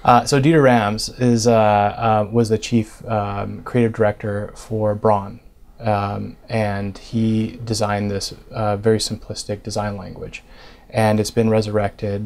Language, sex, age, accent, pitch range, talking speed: English, male, 30-49, American, 105-115 Hz, 140 wpm